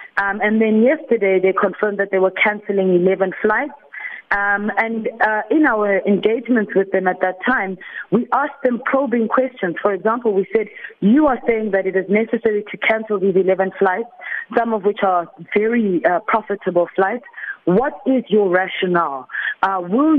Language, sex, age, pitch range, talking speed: English, female, 30-49, 195-250 Hz, 170 wpm